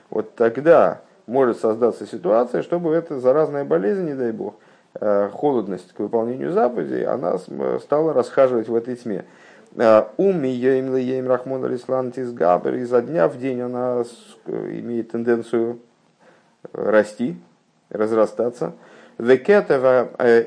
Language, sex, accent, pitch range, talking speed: Russian, male, native, 105-130 Hz, 100 wpm